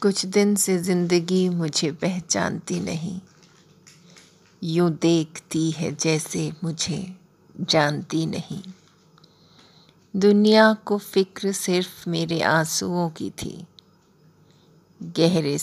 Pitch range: 160-185 Hz